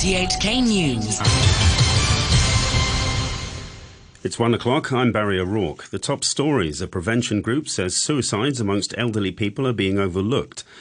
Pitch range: 90-115 Hz